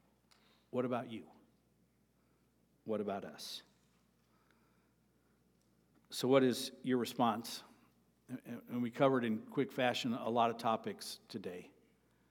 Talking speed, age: 105 wpm, 50-69